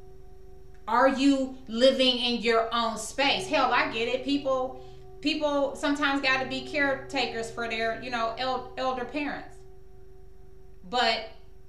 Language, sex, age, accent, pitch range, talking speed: English, female, 30-49, American, 190-265 Hz, 130 wpm